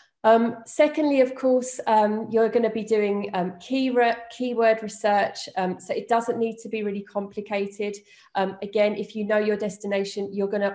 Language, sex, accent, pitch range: English, female, British, 190-225 Hz